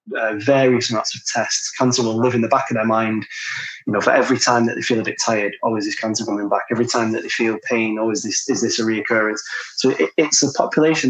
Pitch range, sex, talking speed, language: 115-130 Hz, male, 275 wpm, English